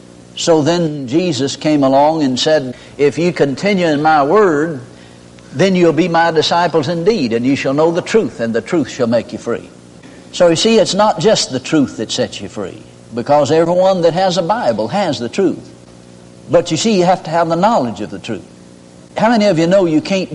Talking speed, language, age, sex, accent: 210 wpm, English, 60-79, male, American